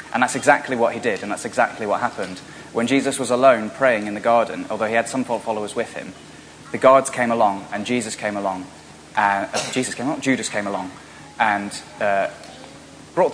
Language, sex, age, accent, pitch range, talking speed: English, male, 20-39, British, 105-130 Hz, 205 wpm